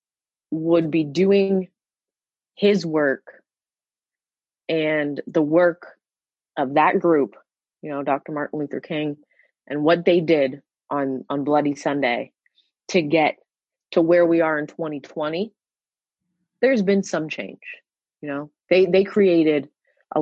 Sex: female